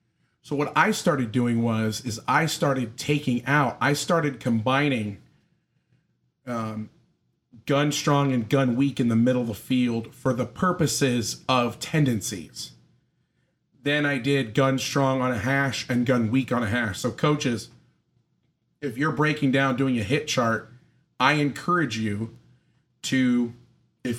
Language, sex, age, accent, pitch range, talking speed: English, male, 40-59, American, 120-140 Hz, 150 wpm